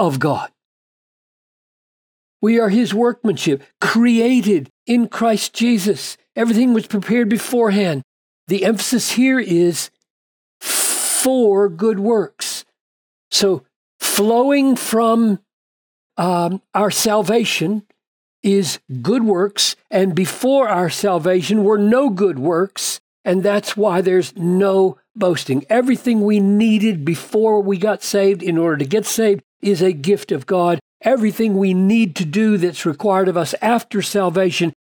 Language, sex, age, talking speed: English, male, 60-79, 125 wpm